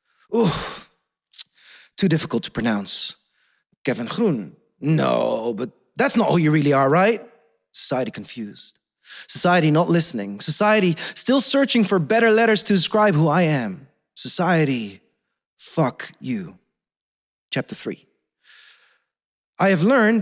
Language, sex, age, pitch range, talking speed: English, male, 30-49, 140-185 Hz, 120 wpm